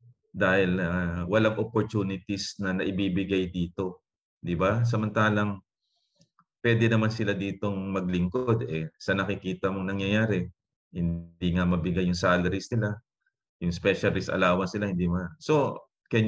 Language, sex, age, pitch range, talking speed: Filipino, male, 30-49, 90-115 Hz, 125 wpm